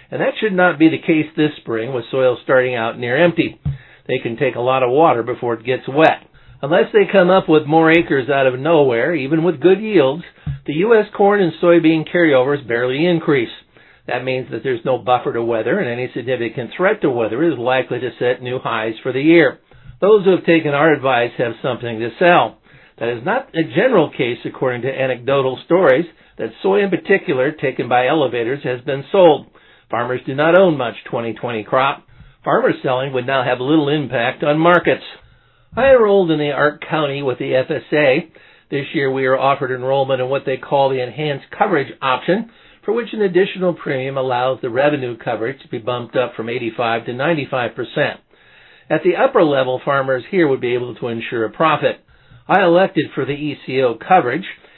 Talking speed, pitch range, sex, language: 195 wpm, 125-170 Hz, male, English